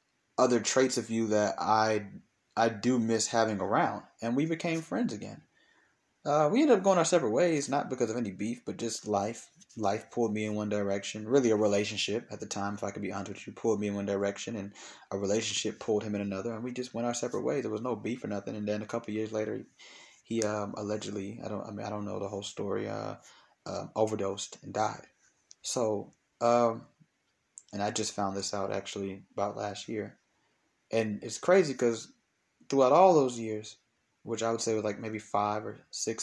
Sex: male